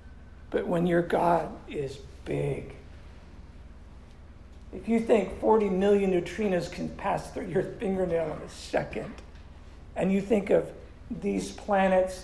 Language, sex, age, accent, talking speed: English, male, 50-69, American, 125 wpm